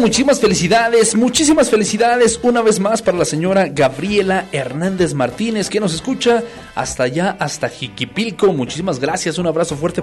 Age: 40-59